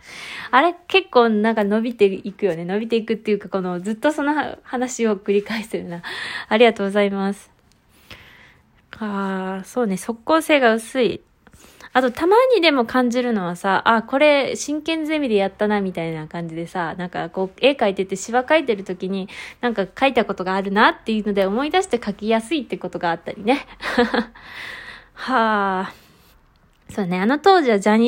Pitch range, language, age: 195-270 Hz, Japanese, 20-39